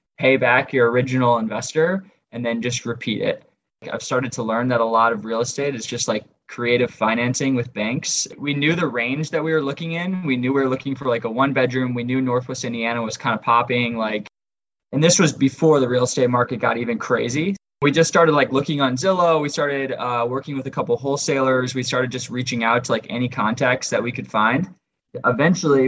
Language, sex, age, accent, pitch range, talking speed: English, male, 20-39, American, 120-145 Hz, 225 wpm